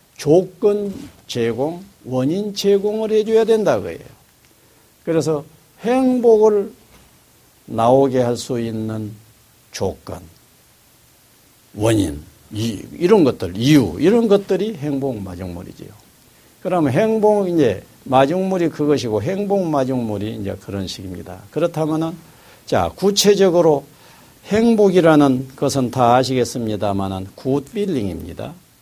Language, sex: Korean, male